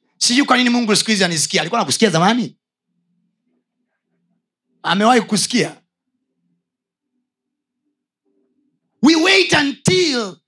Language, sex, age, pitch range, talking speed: Swahili, male, 30-49, 190-260 Hz, 80 wpm